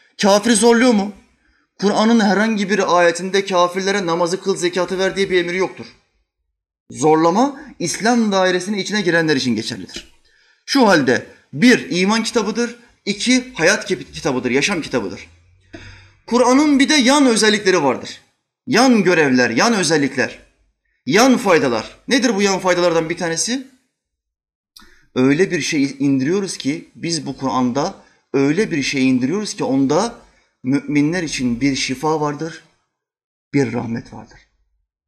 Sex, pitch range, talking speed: male, 130-215 Hz, 125 wpm